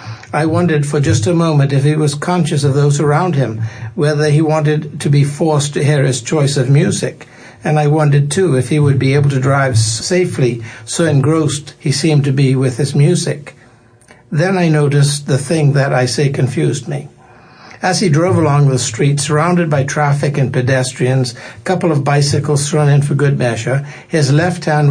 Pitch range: 130-155 Hz